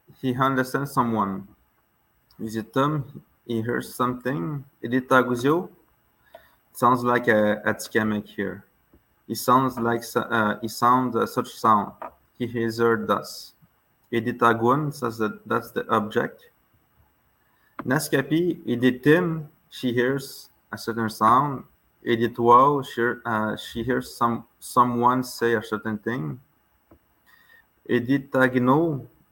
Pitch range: 115-135 Hz